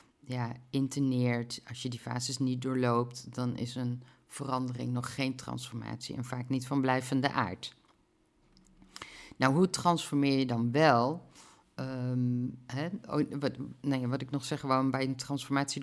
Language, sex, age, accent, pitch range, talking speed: Dutch, female, 50-69, Dutch, 120-140 Hz, 150 wpm